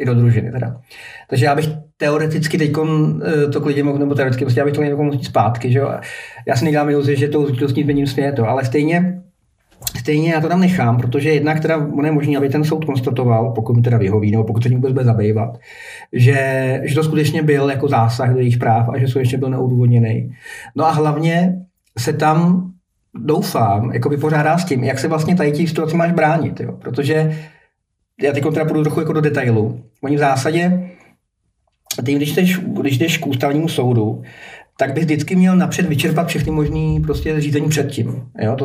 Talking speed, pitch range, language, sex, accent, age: 195 wpm, 125-155 Hz, Czech, male, native, 40-59